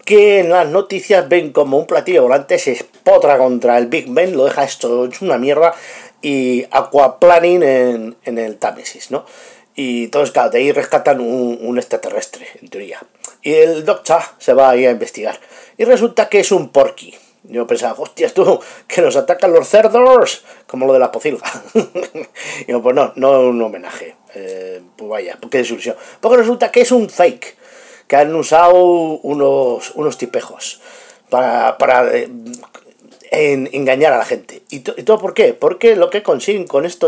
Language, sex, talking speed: Spanish, male, 180 wpm